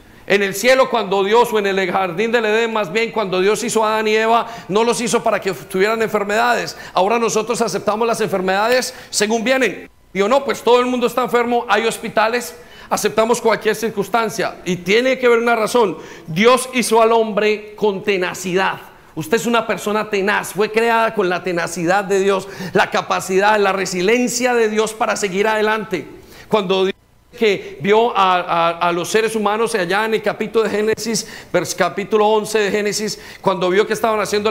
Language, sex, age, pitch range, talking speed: Spanish, male, 40-59, 210-250 Hz, 185 wpm